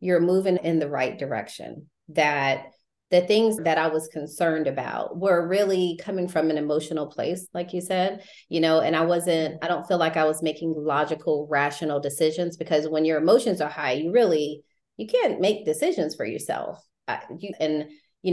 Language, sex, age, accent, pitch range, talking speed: English, female, 30-49, American, 155-175 Hz, 180 wpm